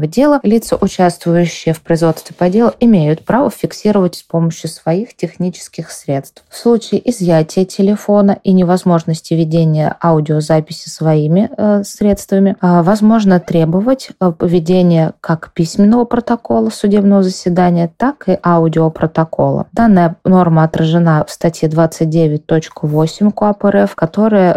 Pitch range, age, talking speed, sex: 165-200 Hz, 20-39, 115 wpm, female